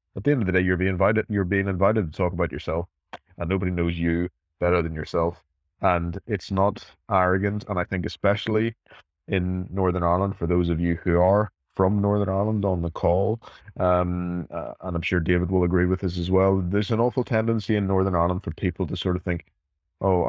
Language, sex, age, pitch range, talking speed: English, male, 20-39, 85-100 Hz, 215 wpm